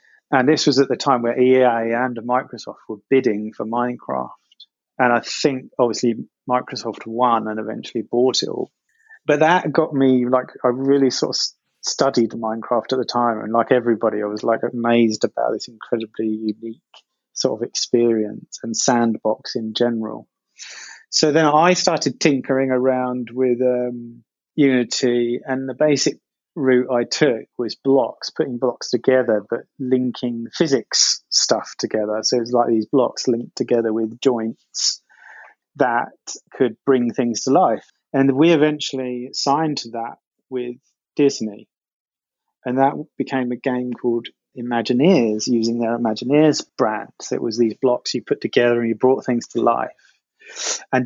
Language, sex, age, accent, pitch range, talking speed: English, male, 30-49, British, 115-135 Hz, 155 wpm